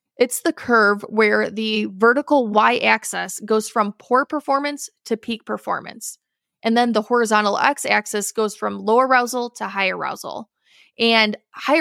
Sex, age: female, 20-39